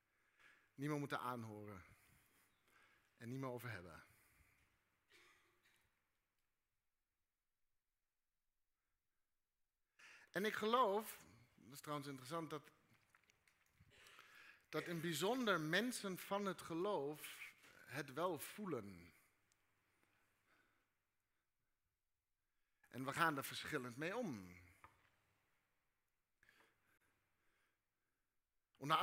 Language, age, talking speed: Dutch, 60-79, 70 wpm